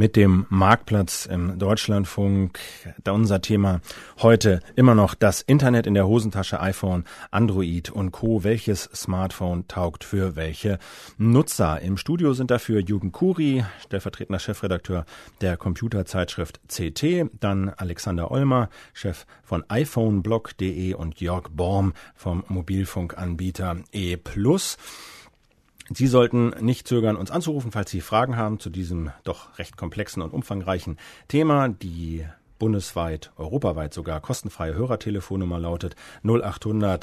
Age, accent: 40-59, German